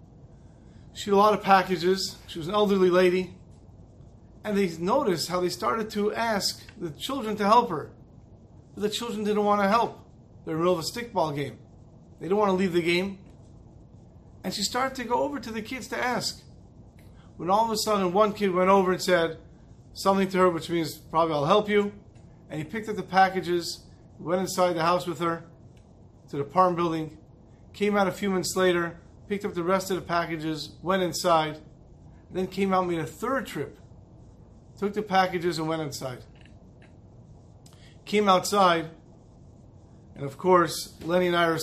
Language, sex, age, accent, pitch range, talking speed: English, male, 40-59, American, 140-190 Hz, 185 wpm